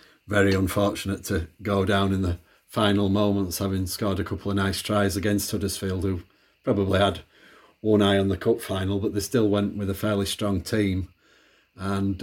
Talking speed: 180 wpm